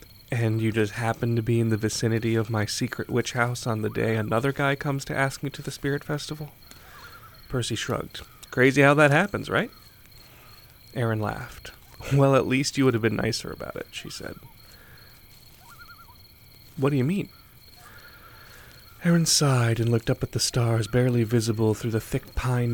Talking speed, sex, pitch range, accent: 175 wpm, male, 110-130 Hz, American